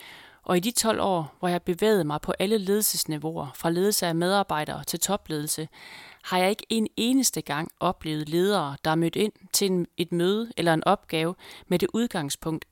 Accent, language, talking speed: native, Danish, 185 wpm